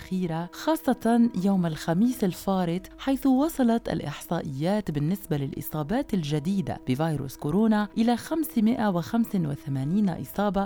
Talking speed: 85 wpm